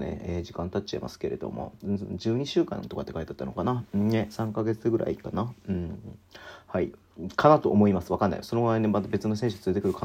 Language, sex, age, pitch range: Japanese, male, 40-59, 95-110 Hz